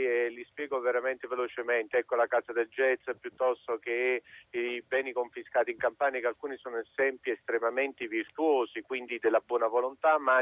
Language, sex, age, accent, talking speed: Italian, male, 50-69, native, 160 wpm